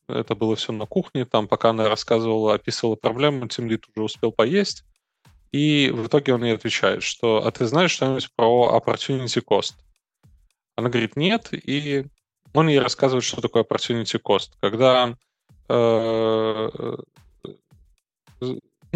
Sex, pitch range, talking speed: male, 110-135 Hz, 135 wpm